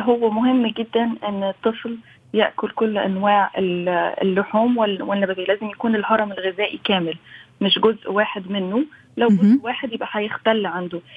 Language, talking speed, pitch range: Arabic, 135 wpm, 195-225 Hz